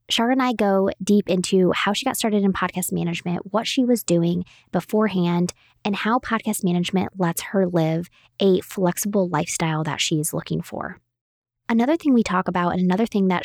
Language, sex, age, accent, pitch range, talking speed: English, female, 20-39, American, 175-210 Hz, 185 wpm